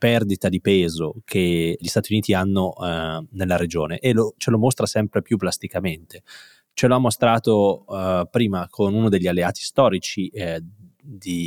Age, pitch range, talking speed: 20-39, 90-110 Hz, 150 wpm